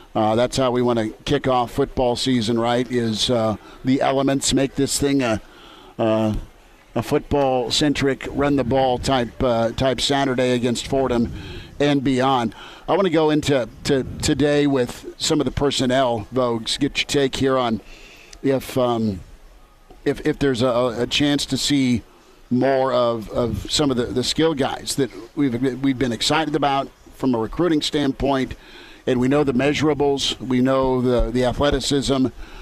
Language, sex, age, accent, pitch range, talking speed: English, male, 50-69, American, 125-140 Hz, 175 wpm